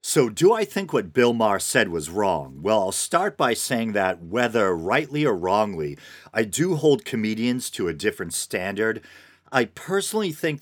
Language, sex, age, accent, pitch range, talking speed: English, male, 40-59, American, 100-130 Hz, 175 wpm